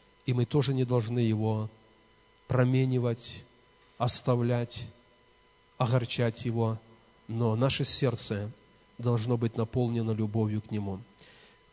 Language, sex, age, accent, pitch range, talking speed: Russian, male, 40-59, native, 115-140 Hz, 100 wpm